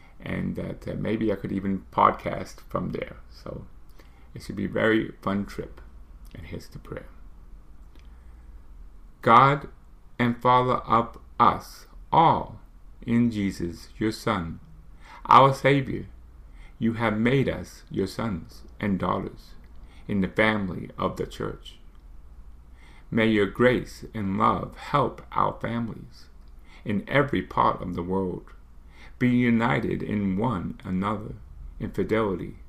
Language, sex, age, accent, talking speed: English, male, 50-69, American, 125 wpm